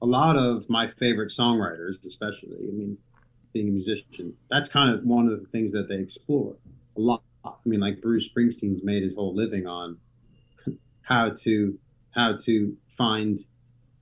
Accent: American